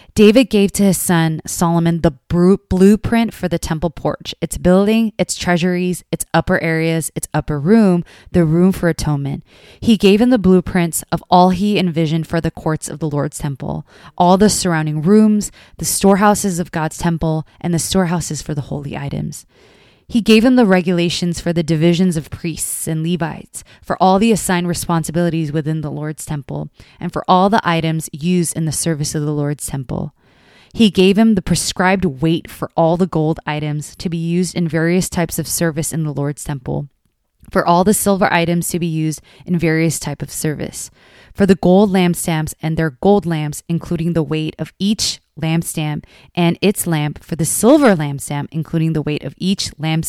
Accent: American